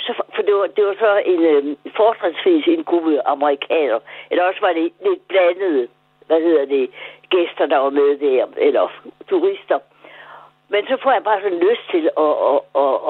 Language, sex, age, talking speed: Danish, female, 60-79, 175 wpm